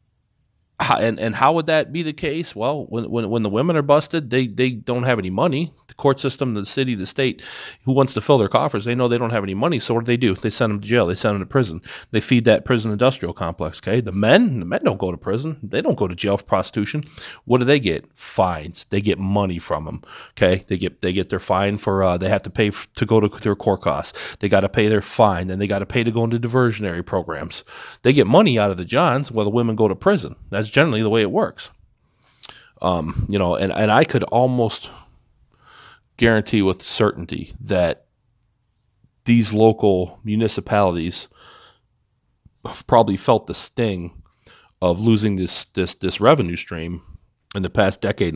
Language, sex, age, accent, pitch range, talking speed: English, male, 40-59, American, 95-125 Hz, 215 wpm